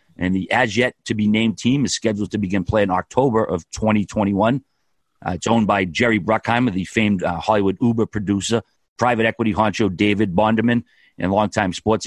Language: English